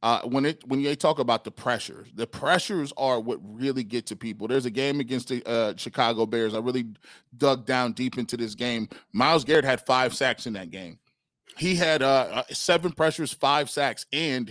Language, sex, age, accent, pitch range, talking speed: English, male, 30-49, American, 130-180 Hz, 205 wpm